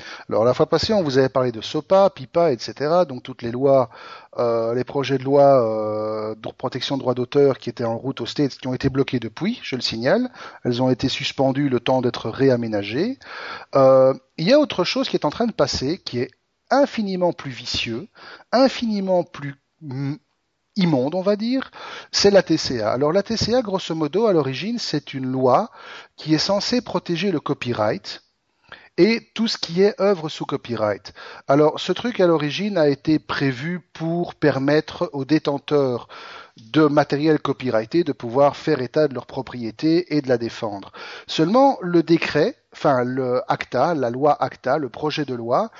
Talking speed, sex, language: 180 wpm, male, French